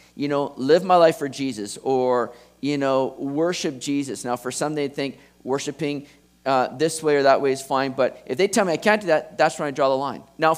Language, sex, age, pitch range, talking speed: English, male, 40-59, 145-190 Hz, 240 wpm